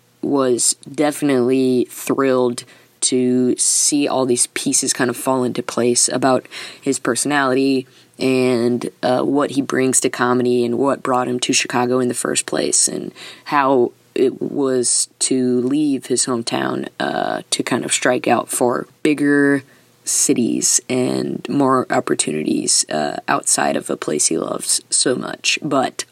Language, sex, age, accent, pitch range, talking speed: English, female, 20-39, American, 125-145 Hz, 145 wpm